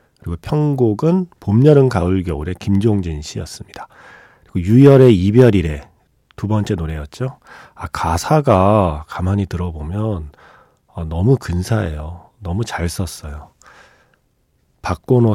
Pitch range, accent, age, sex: 90-135 Hz, native, 40-59, male